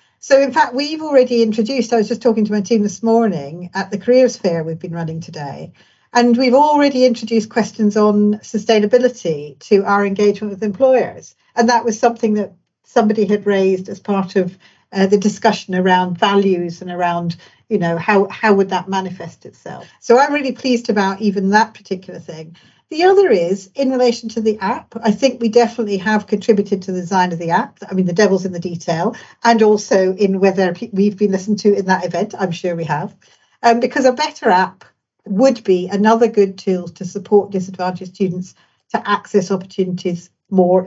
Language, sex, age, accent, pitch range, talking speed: English, female, 50-69, British, 185-235 Hz, 190 wpm